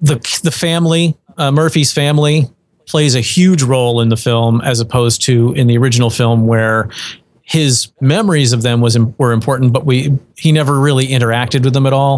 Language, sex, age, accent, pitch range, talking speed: English, male, 40-59, American, 120-150 Hz, 185 wpm